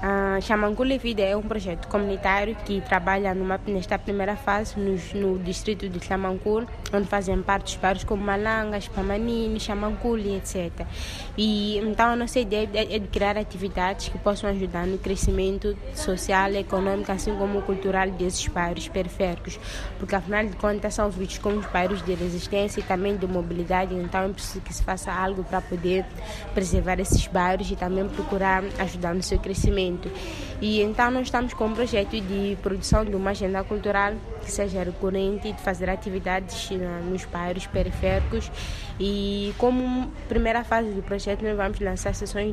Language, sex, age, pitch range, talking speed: Portuguese, female, 20-39, 185-205 Hz, 165 wpm